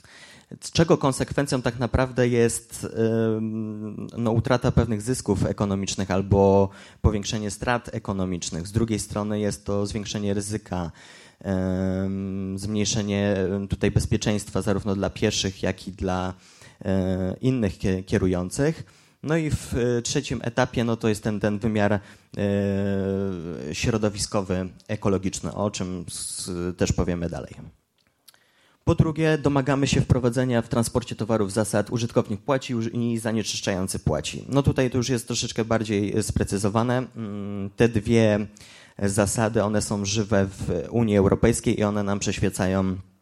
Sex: male